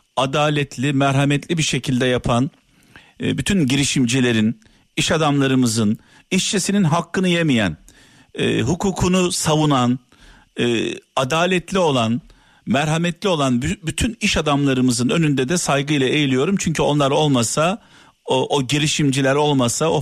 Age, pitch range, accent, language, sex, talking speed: 50-69, 130-180 Hz, native, Turkish, male, 100 wpm